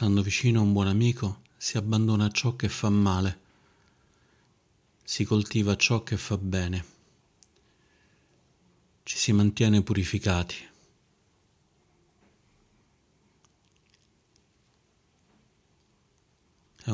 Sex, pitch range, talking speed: male, 95-110 Hz, 80 wpm